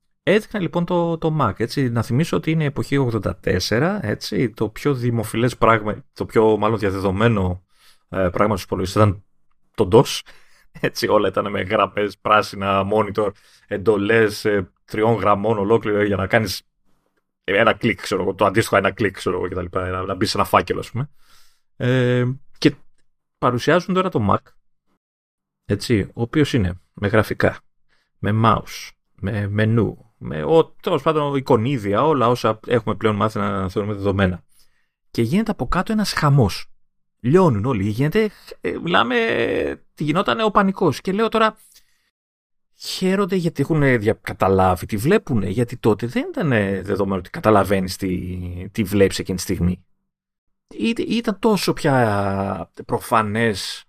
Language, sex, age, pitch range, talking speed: Greek, male, 30-49, 100-140 Hz, 140 wpm